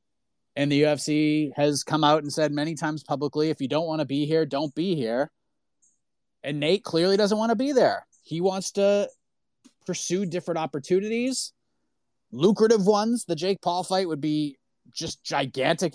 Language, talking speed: English, 170 wpm